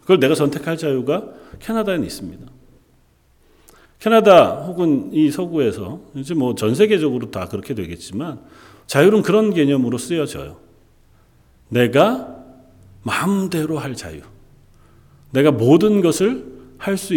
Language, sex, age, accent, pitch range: Korean, male, 40-59, native, 115-185 Hz